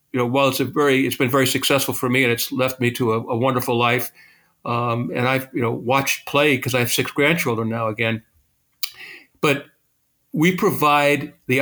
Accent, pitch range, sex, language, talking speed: American, 120-140 Hz, male, English, 200 wpm